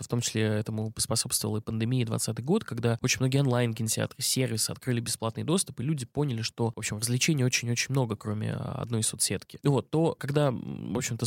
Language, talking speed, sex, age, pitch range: Russian, 185 wpm, male, 20-39, 115-140 Hz